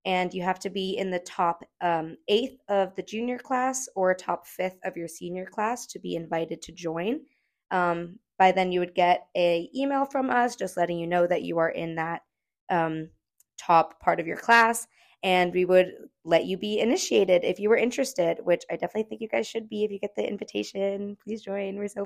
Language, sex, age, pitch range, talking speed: English, female, 20-39, 180-215 Hz, 215 wpm